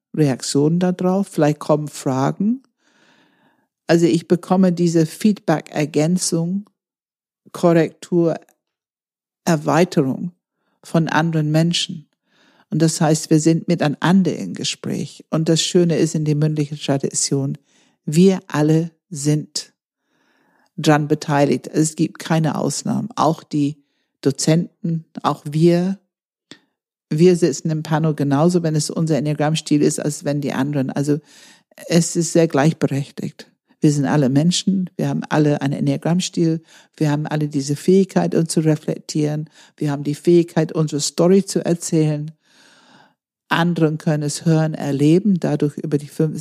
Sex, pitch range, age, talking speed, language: female, 150-175 Hz, 50-69, 130 wpm, German